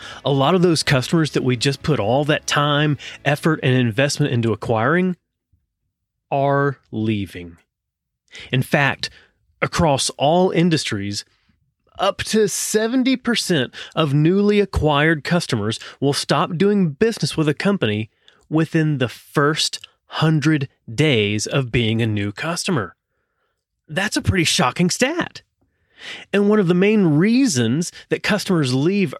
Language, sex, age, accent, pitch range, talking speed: English, male, 30-49, American, 120-180 Hz, 125 wpm